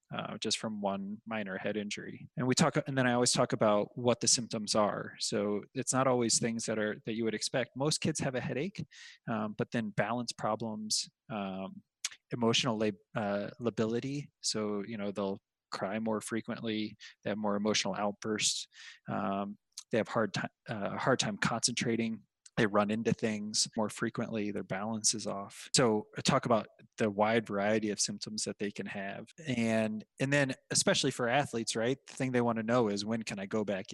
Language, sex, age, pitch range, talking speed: English, male, 20-39, 105-120 Hz, 195 wpm